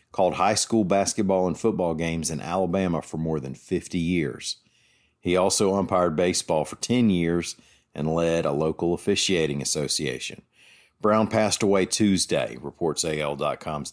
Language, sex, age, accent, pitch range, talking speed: English, male, 50-69, American, 80-100 Hz, 140 wpm